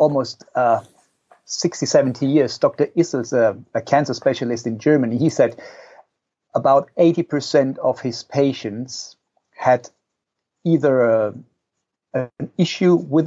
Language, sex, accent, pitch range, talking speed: English, male, German, 120-145 Hz, 115 wpm